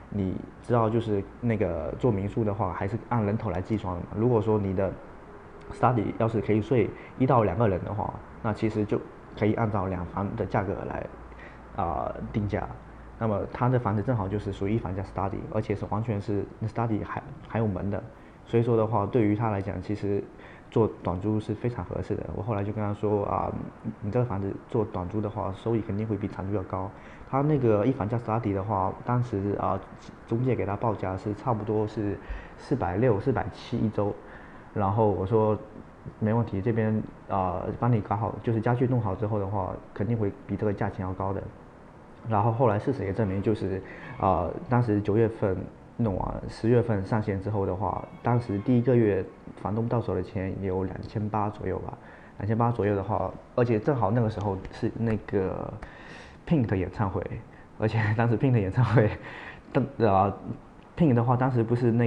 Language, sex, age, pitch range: Chinese, male, 20-39, 100-115 Hz